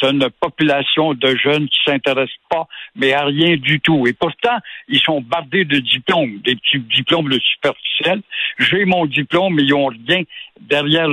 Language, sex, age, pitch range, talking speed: French, male, 60-79, 140-180 Hz, 180 wpm